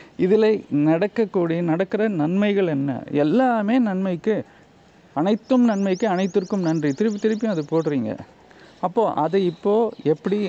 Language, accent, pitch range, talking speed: Tamil, native, 145-190 Hz, 110 wpm